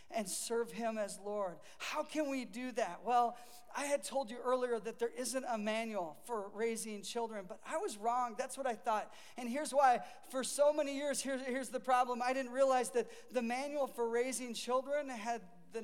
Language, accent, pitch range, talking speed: English, American, 235-290 Hz, 200 wpm